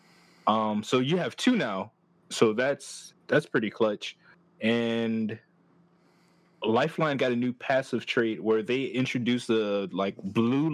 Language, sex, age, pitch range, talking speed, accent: English, male, 20-39, 110-150 Hz, 135 wpm, American